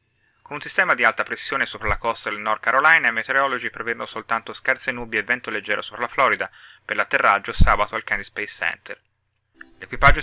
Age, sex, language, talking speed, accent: 30-49, male, Italian, 180 wpm, native